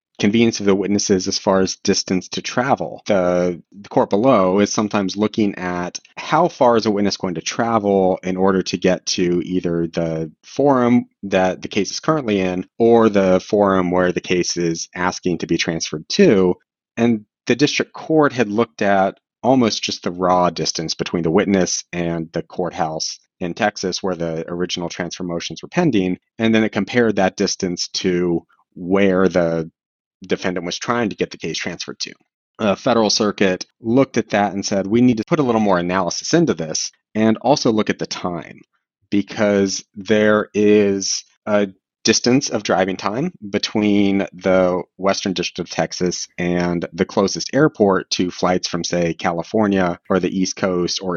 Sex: male